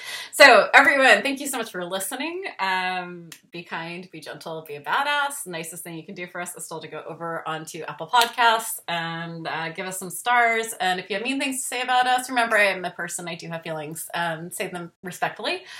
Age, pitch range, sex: 20-39, 175-235 Hz, female